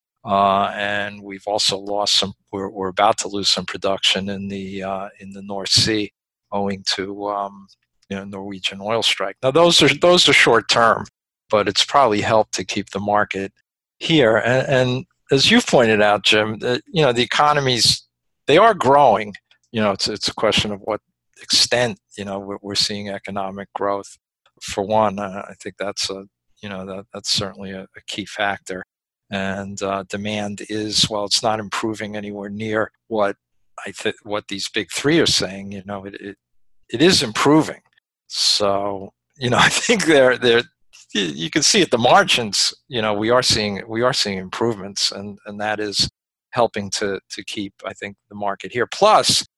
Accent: American